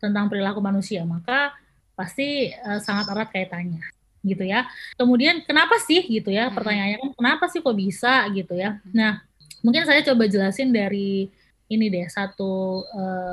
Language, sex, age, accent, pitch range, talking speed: Indonesian, female, 20-39, native, 200-240 Hz, 150 wpm